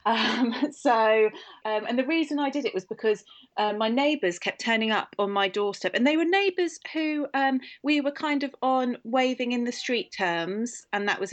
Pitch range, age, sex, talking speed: 180-235 Hz, 30-49, female, 205 wpm